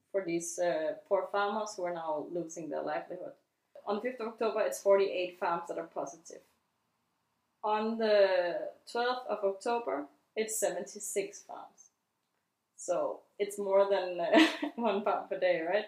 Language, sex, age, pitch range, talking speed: English, female, 20-39, 190-235 Hz, 150 wpm